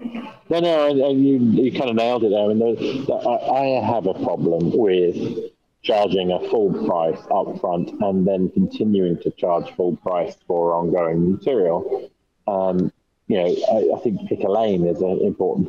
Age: 40-59